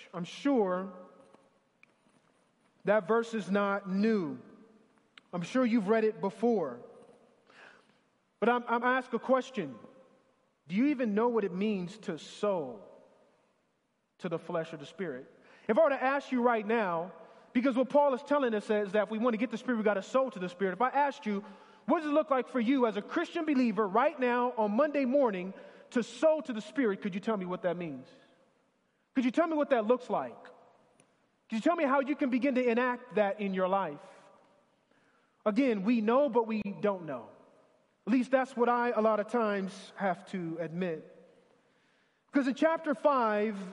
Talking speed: 195 wpm